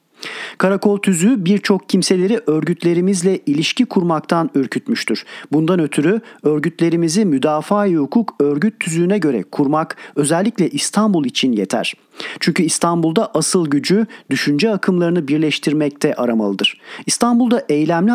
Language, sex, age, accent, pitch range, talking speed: Turkish, male, 40-59, native, 150-200 Hz, 105 wpm